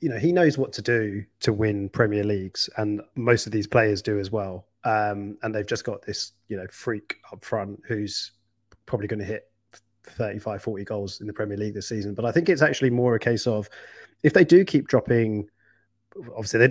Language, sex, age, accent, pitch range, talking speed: English, male, 30-49, British, 105-120 Hz, 215 wpm